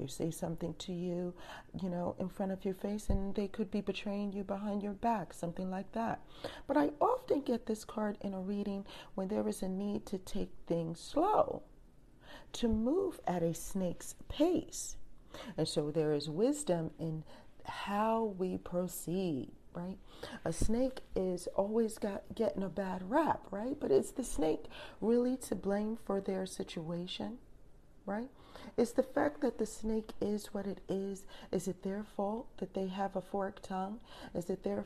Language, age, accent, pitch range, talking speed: English, 40-59, American, 185-220 Hz, 175 wpm